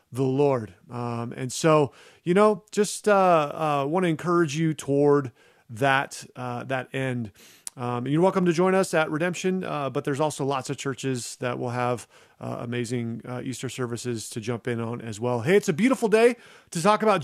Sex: male